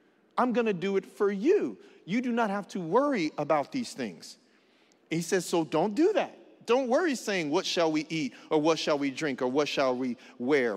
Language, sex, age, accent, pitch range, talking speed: English, male, 40-59, American, 140-230 Hz, 215 wpm